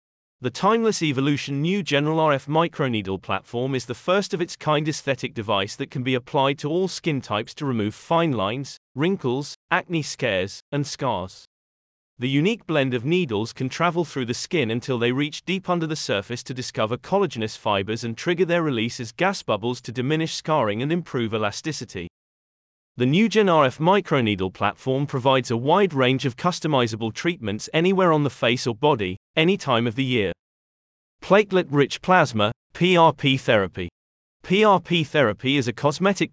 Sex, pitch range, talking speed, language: male, 115-165 Hz, 165 wpm, English